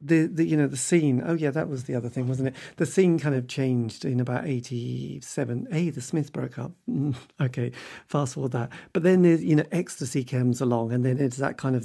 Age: 40-59